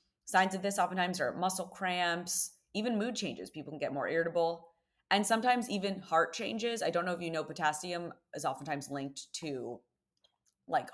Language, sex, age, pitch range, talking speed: English, female, 20-39, 145-195 Hz, 175 wpm